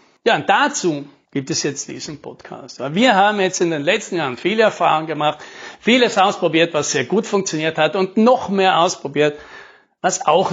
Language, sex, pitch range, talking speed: German, male, 145-195 Hz, 175 wpm